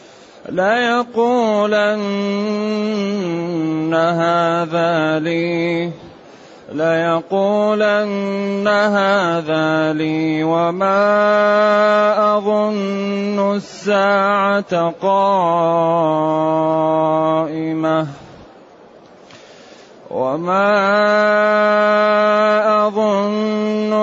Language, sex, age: Arabic, male, 30-49